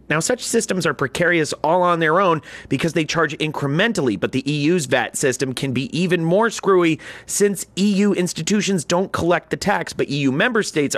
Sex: male